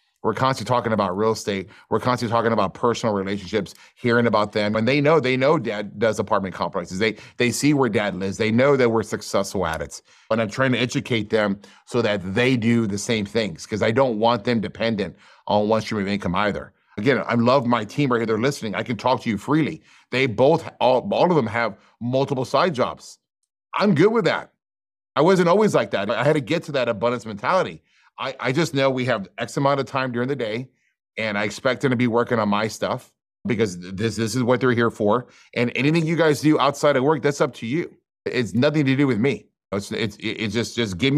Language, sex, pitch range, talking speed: English, male, 110-135 Hz, 230 wpm